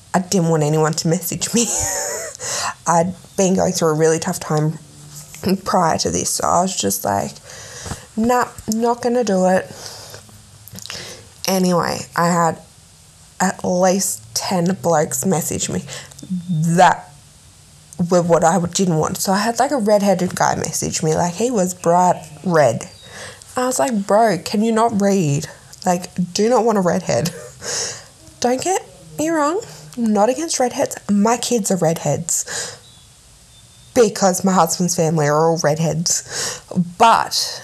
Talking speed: 145 wpm